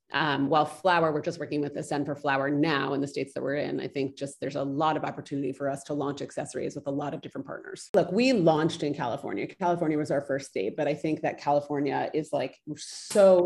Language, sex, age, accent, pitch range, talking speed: English, female, 30-49, American, 145-165 Hz, 240 wpm